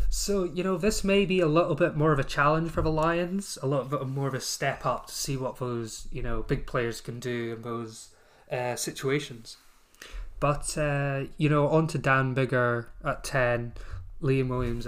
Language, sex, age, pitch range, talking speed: English, male, 20-39, 120-140 Hz, 200 wpm